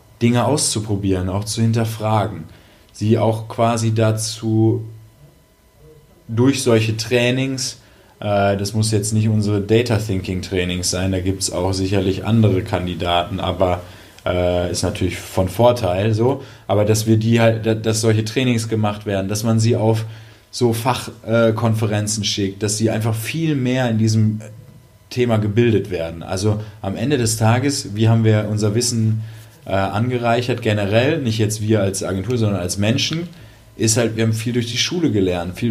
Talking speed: 155 wpm